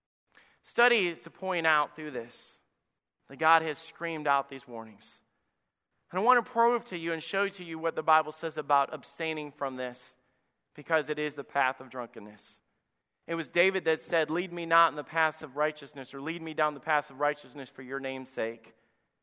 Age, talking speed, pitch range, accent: 40-59, 205 wpm, 150-205 Hz, American